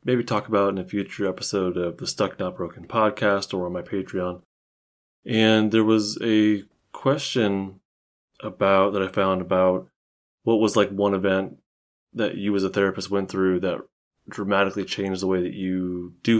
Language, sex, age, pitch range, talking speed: English, male, 20-39, 90-105 Hz, 170 wpm